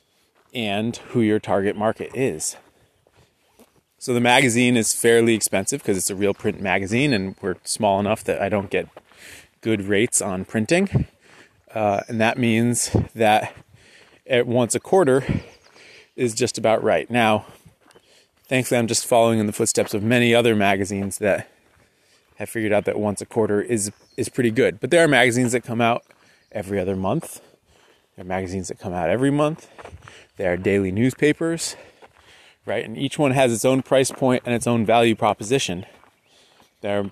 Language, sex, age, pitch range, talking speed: English, male, 30-49, 105-125 Hz, 170 wpm